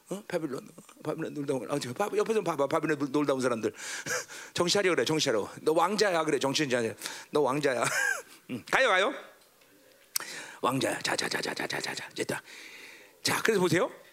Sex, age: male, 40-59